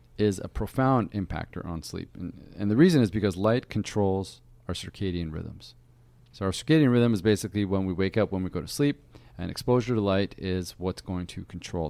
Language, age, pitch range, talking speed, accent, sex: English, 40-59, 95-120 Hz, 205 wpm, American, male